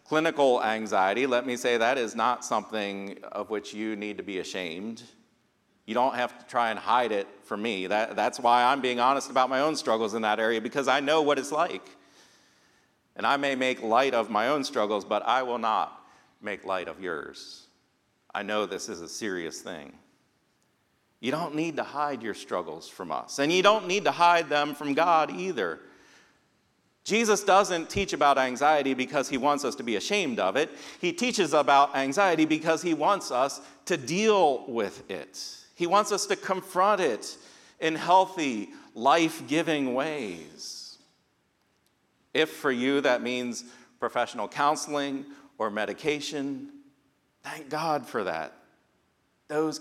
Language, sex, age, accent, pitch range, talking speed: English, male, 40-59, American, 120-165 Hz, 165 wpm